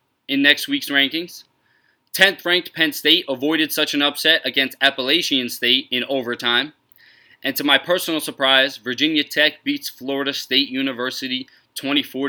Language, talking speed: English, 140 wpm